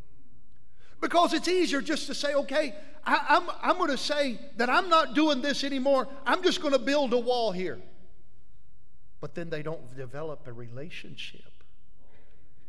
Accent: American